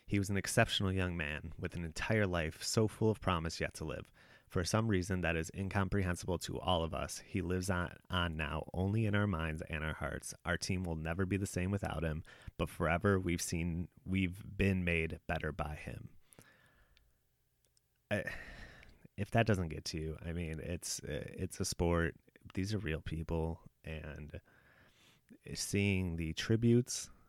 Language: English